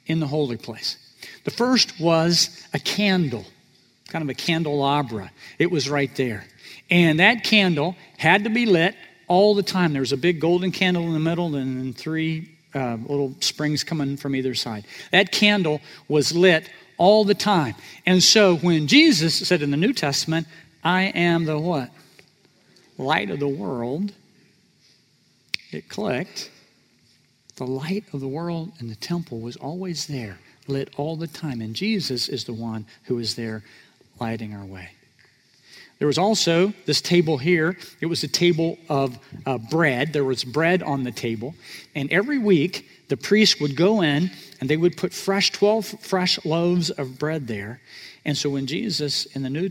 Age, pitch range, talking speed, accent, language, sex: 50-69, 135-175 Hz, 170 wpm, American, English, male